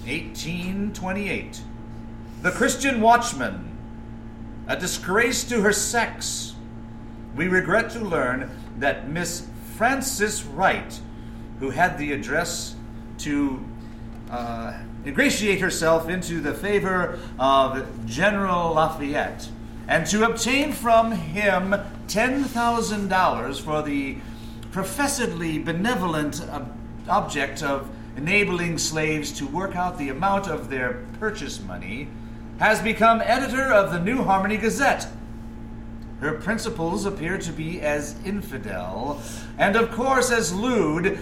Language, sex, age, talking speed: English, male, 50-69, 110 wpm